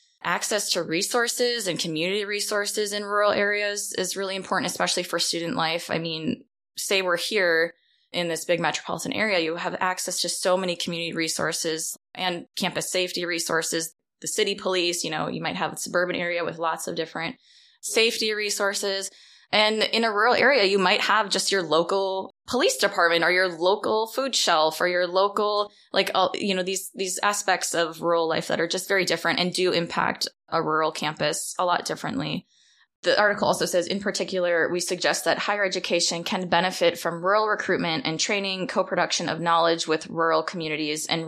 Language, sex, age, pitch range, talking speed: English, female, 20-39, 160-190 Hz, 180 wpm